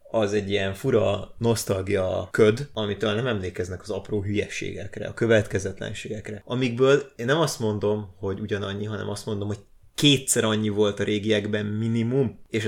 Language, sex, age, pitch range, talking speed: Hungarian, male, 30-49, 100-120 Hz, 150 wpm